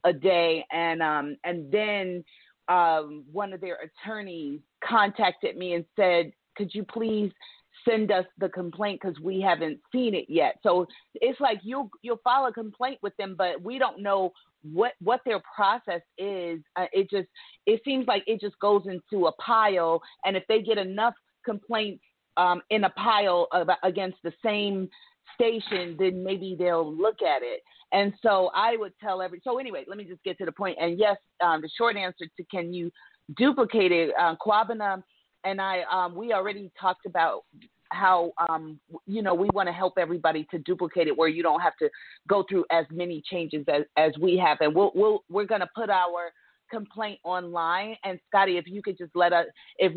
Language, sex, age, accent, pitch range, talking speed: English, female, 30-49, American, 175-215 Hz, 190 wpm